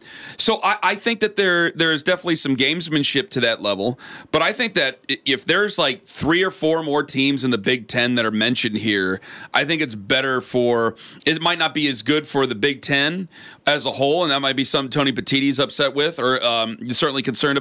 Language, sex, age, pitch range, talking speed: English, male, 40-59, 130-165 Hz, 230 wpm